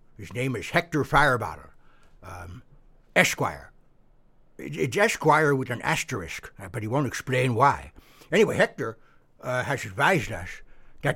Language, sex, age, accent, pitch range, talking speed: English, male, 60-79, American, 125-165 Hz, 130 wpm